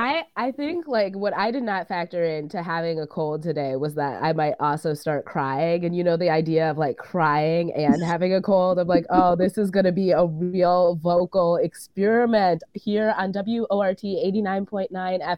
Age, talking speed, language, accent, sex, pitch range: 20-39, 190 wpm, English, American, female, 165-195 Hz